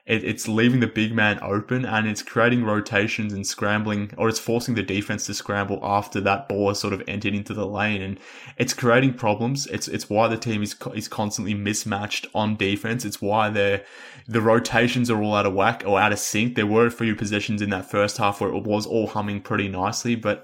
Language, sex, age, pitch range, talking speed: English, male, 20-39, 100-115 Hz, 220 wpm